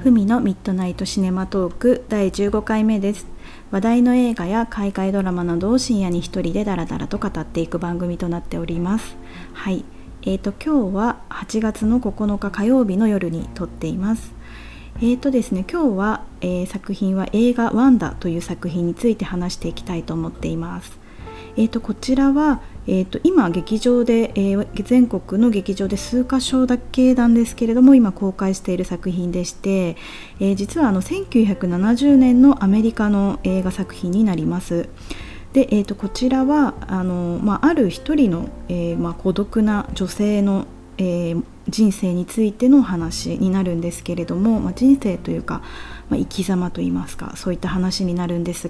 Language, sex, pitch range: Japanese, female, 180-230 Hz